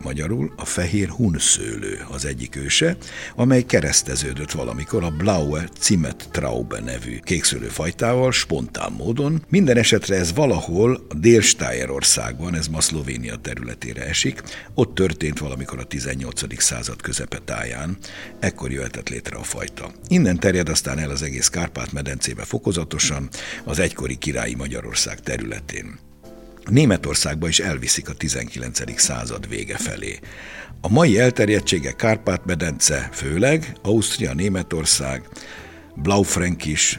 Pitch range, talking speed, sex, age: 70-100 Hz, 115 wpm, male, 60-79